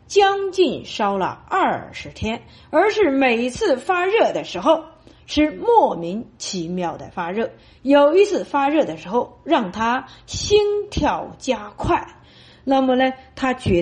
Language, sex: Chinese, female